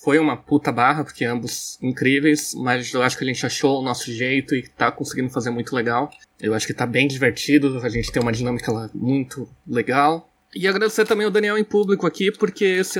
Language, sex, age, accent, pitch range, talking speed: Portuguese, male, 20-39, Brazilian, 135-165 Hz, 215 wpm